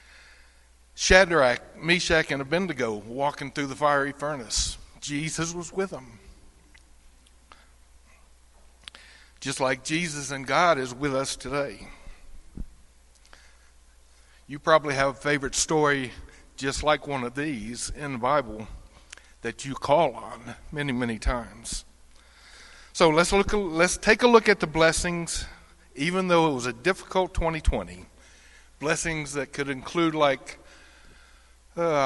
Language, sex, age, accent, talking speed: English, male, 60-79, American, 120 wpm